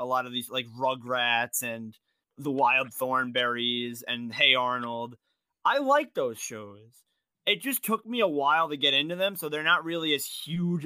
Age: 20-39